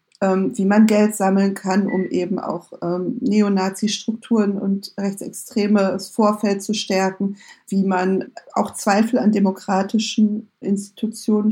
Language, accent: German, German